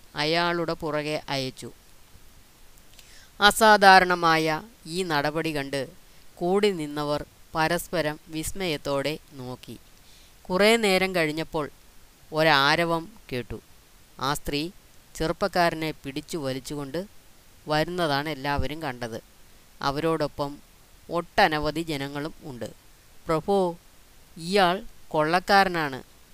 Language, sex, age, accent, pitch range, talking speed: Malayalam, female, 20-39, native, 140-170 Hz, 75 wpm